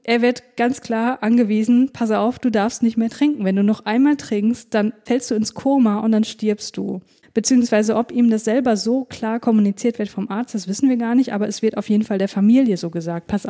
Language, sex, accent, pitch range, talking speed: German, female, German, 205-240 Hz, 235 wpm